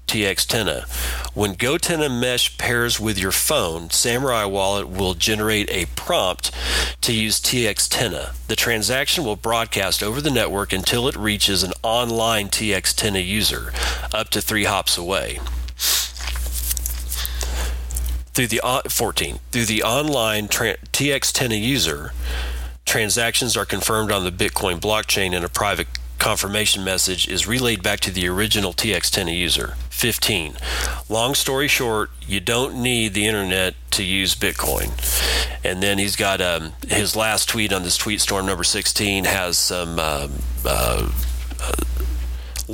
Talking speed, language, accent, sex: 140 wpm, English, American, male